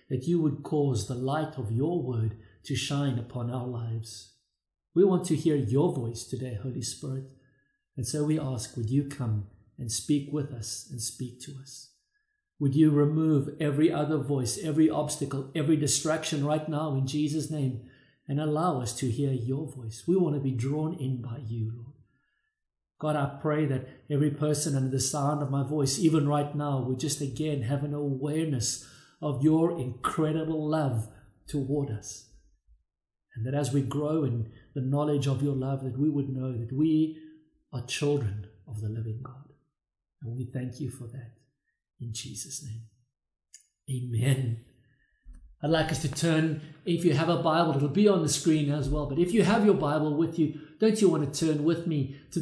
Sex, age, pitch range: male, 50-69, 125-155 Hz